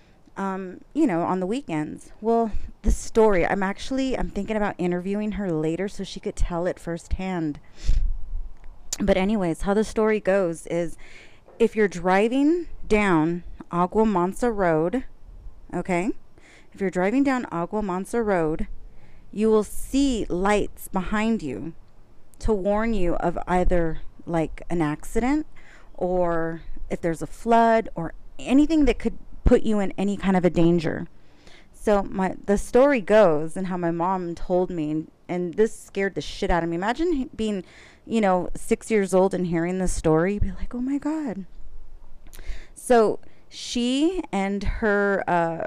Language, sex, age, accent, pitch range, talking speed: English, female, 30-49, American, 175-220 Hz, 150 wpm